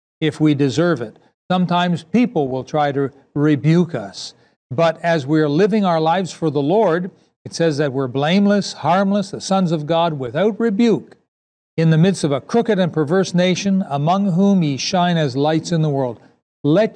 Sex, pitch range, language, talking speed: male, 140-175 Hz, English, 180 wpm